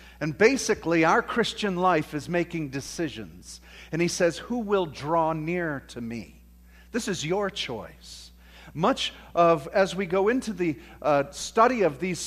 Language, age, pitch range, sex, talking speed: English, 50-69, 155-215 Hz, male, 155 wpm